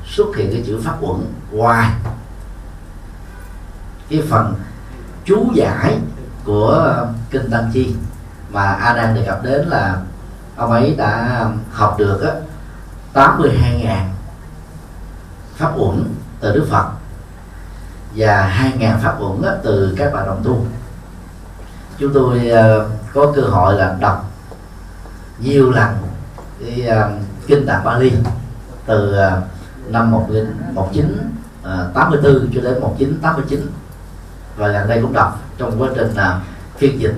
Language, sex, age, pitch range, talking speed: Vietnamese, male, 30-49, 95-120 Hz, 125 wpm